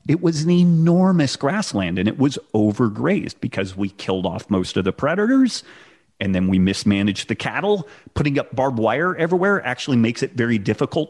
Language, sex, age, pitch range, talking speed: English, male, 30-49, 100-130 Hz, 180 wpm